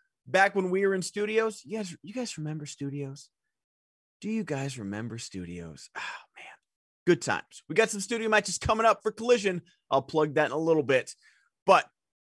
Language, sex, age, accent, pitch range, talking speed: English, male, 30-49, American, 150-215 Hz, 185 wpm